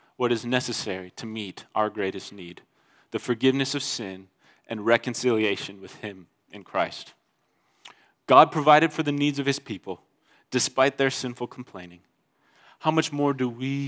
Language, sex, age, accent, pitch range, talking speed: English, male, 30-49, American, 110-140 Hz, 150 wpm